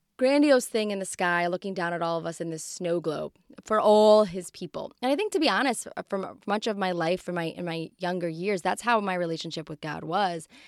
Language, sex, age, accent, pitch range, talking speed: English, female, 20-39, American, 170-205 Hz, 240 wpm